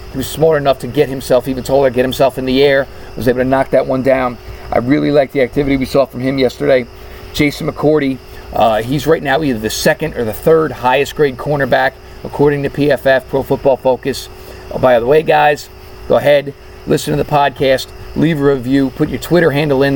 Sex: male